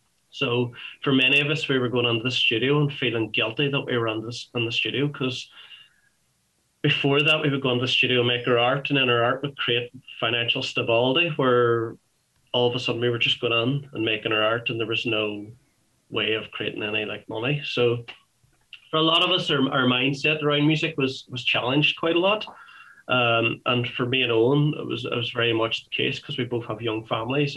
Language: English